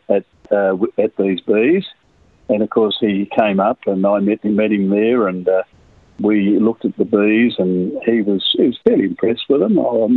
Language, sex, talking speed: English, male, 205 wpm